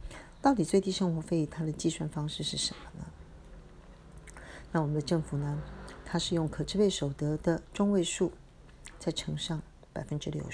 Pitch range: 145-170 Hz